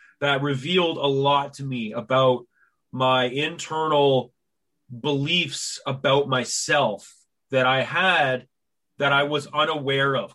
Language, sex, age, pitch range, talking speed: English, male, 30-49, 130-155 Hz, 115 wpm